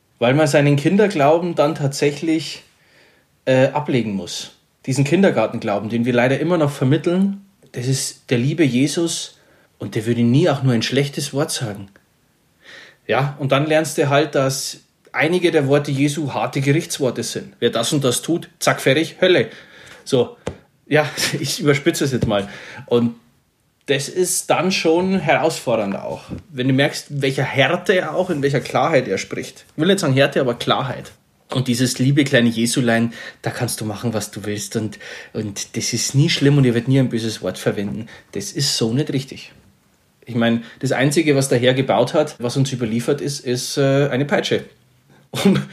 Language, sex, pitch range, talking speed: German, male, 120-155 Hz, 175 wpm